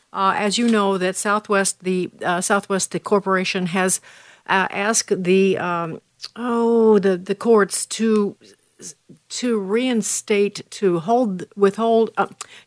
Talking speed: 130 wpm